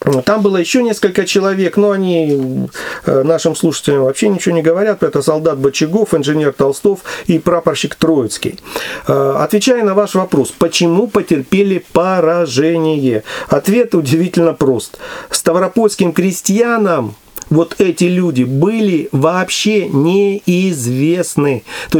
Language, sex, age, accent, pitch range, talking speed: Russian, male, 40-59, native, 155-205 Hz, 115 wpm